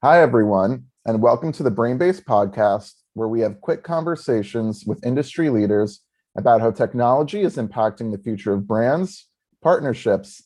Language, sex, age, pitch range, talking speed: English, male, 30-49, 110-135 Hz, 150 wpm